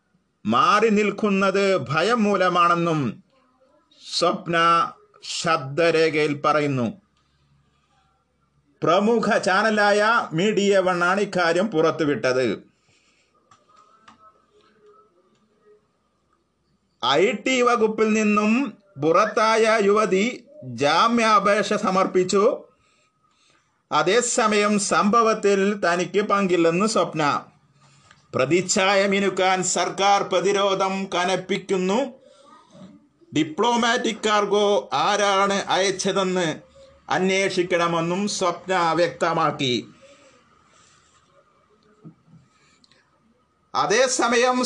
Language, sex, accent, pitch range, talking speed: Malayalam, male, native, 180-230 Hz, 50 wpm